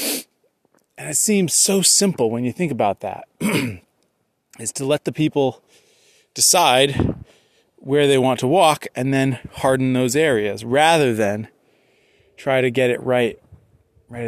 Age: 30-49